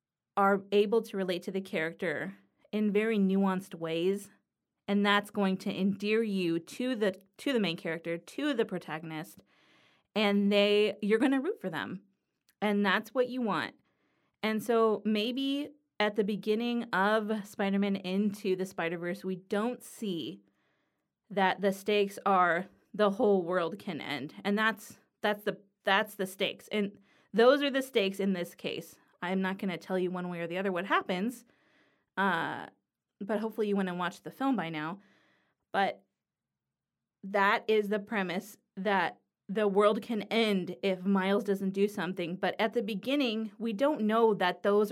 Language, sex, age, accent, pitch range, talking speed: English, female, 20-39, American, 190-215 Hz, 165 wpm